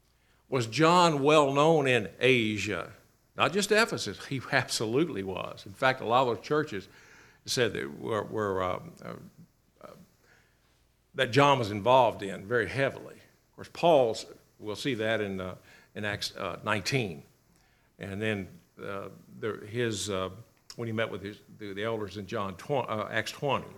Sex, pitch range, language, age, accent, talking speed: male, 110-145 Hz, English, 60-79, American, 160 wpm